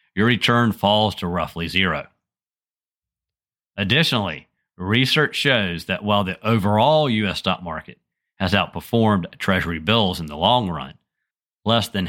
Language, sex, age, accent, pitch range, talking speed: English, male, 40-59, American, 95-120 Hz, 130 wpm